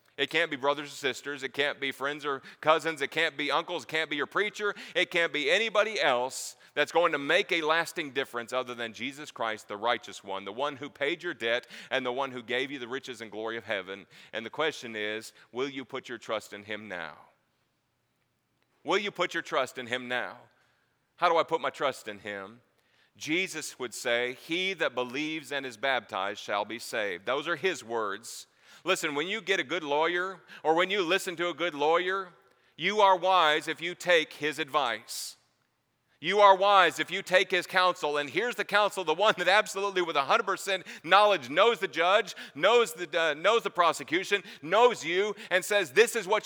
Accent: American